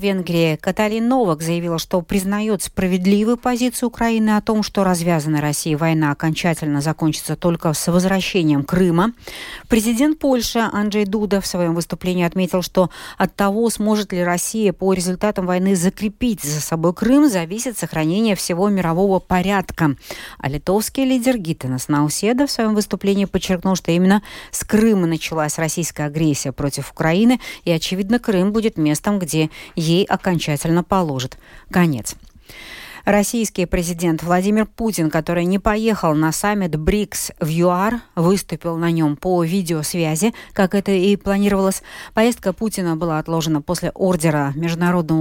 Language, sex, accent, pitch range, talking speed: Russian, female, native, 165-205 Hz, 140 wpm